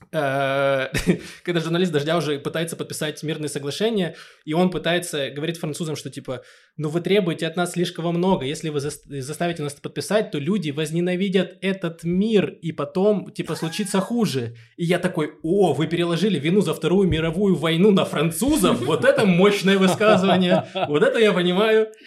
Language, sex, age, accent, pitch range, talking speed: Russian, male, 20-39, native, 150-195 Hz, 160 wpm